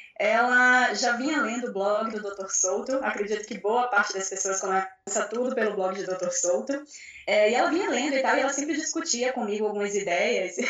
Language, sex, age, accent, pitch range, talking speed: Portuguese, female, 10-29, Brazilian, 210-270 Hz, 200 wpm